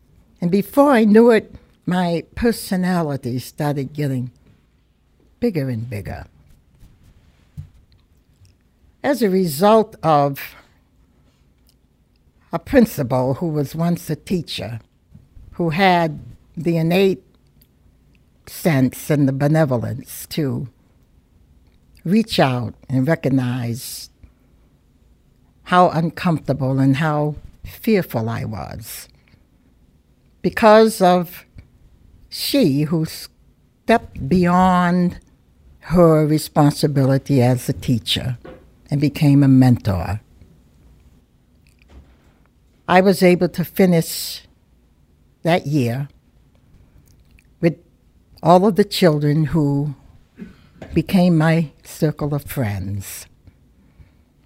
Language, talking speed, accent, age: English, 85 wpm, American, 60-79